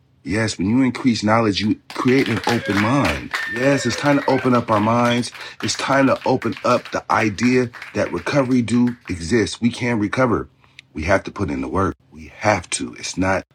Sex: male